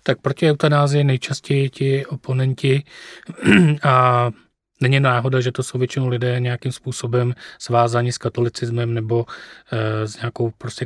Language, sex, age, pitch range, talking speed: Czech, male, 30-49, 120-130 Hz, 135 wpm